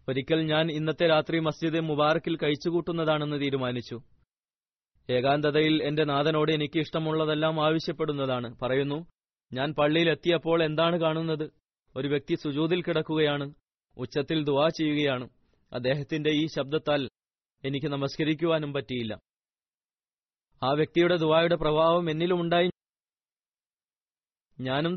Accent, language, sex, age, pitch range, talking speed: native, Malayalam, male, 20-39, 140-160 Hz, 95 wpm